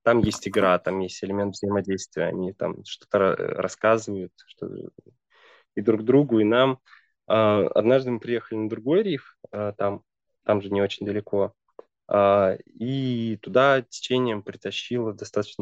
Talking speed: 125 wpm